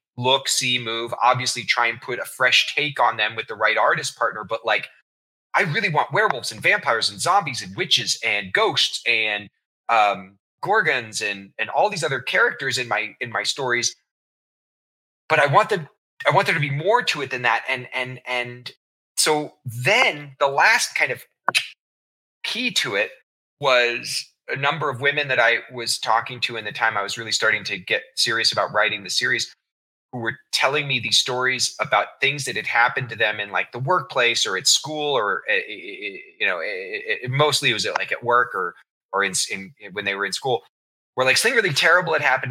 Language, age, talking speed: English, 30-49, 205 wpm